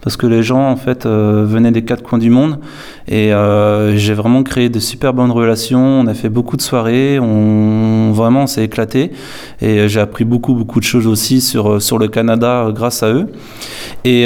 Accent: French